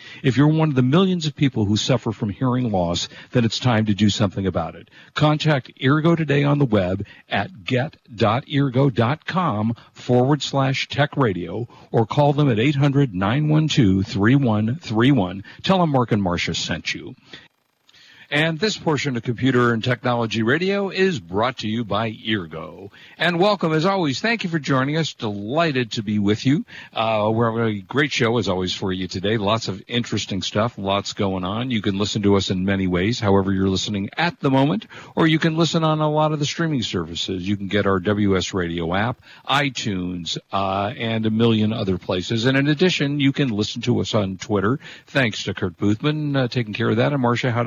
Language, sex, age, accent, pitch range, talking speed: English, male, 60-79, American, 105-145 Hz, 190 wpm